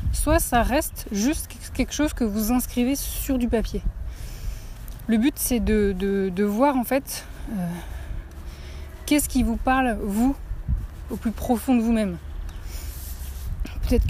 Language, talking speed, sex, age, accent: French, 135 wpm, female, 20-39, French